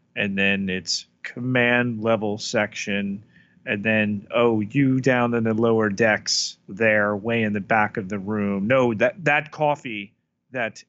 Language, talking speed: English, 155 wpm